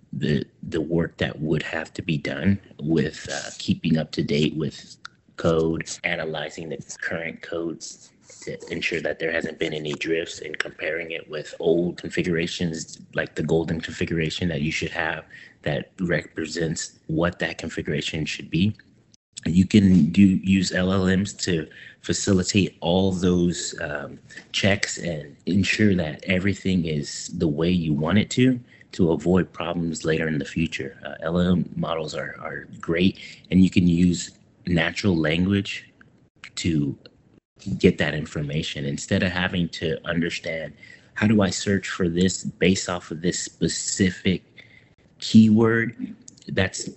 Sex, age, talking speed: male, 30-49, 145 wpm